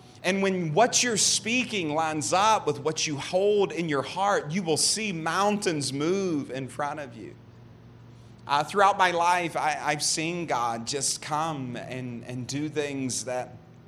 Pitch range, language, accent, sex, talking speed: 125-150 Hz, English, American, male, 160 wpm